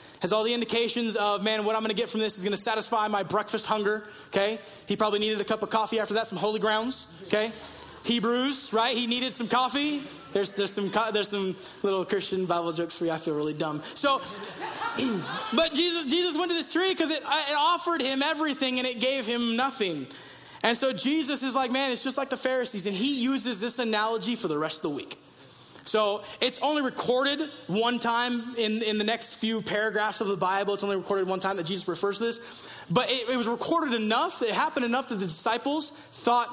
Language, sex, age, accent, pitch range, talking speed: English, male, 20-39, American, 205-270 Hz, 220 wpm